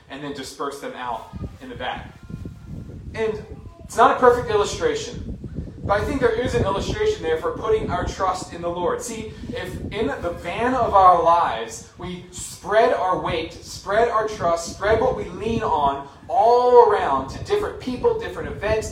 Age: 30-49